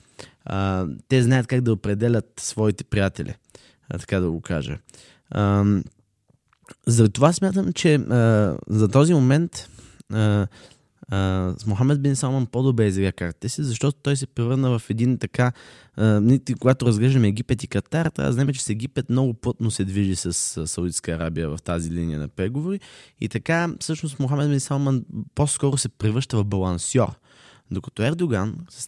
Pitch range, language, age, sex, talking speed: 95-130 Hz, Bulgarian, 20-39, male, 155 wpm